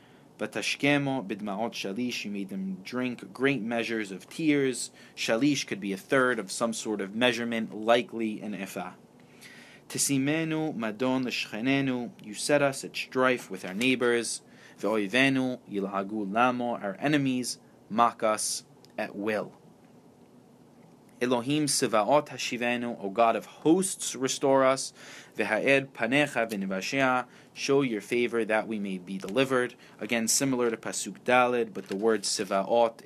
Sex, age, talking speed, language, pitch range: male, 20-39, 115 wpm, English, 105-135 Hz